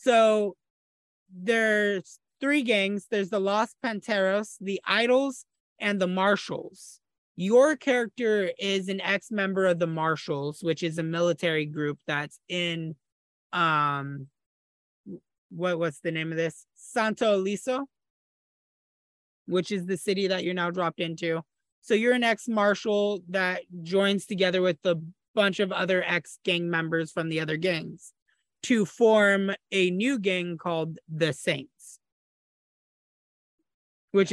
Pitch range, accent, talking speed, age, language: 170-210 Hz, American, 130 wpm, 30-49, English